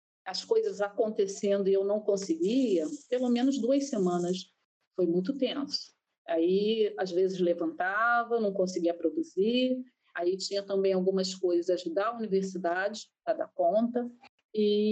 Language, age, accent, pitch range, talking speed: Portuguese, 40-59, Brazilian, 190-245 Hz, 135 wpm